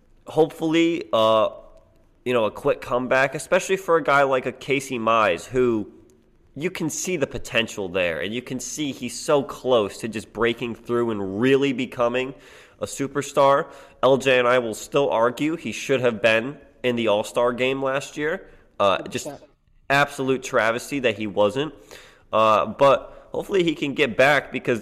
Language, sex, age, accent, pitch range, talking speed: English, male, 20-39, American, 120-150 Hz, 165 wpm